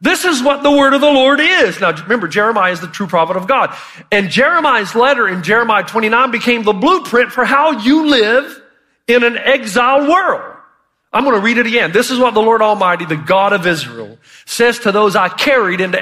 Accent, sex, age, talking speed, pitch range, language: American, male, 40-59, 215 wpm, 185-245 Hz, English